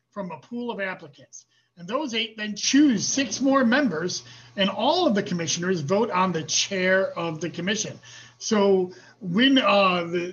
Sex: male